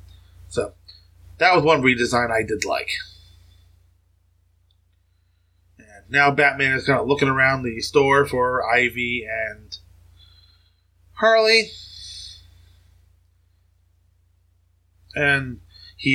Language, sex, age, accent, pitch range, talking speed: English, male, 20-39, American, 90-135 Hz, 90 wpm